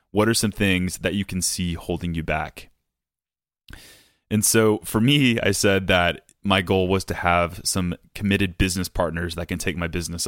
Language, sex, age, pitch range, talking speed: English, male, 20-39, 90-100 Hz, 185 wpm